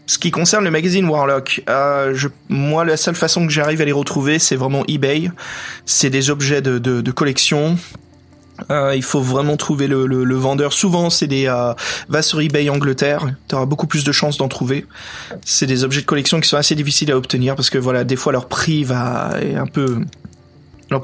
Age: 20-39